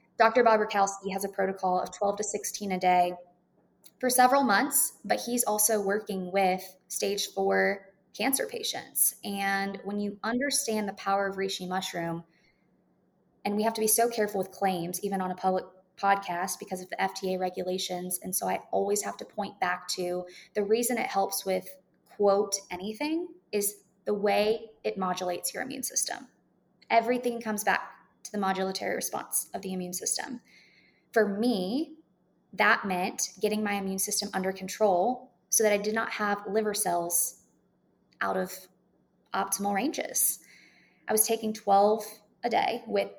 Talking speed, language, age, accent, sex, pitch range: 160 wpm, English, 20-39, American, female, 185-215 Hz